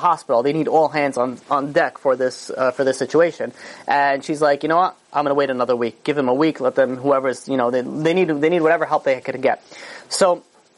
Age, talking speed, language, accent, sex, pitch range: 30-49, 255 wpm, English, American, male, 130-160 Hz